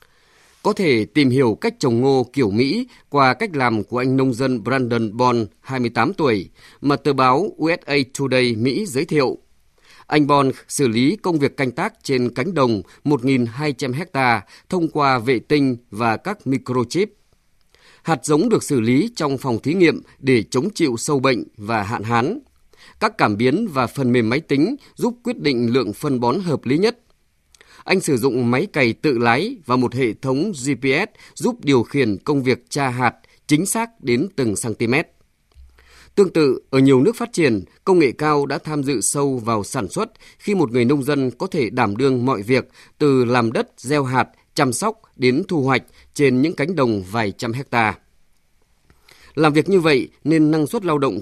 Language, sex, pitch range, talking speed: Vietnamese, male, 120-145 Hz, 185 wpm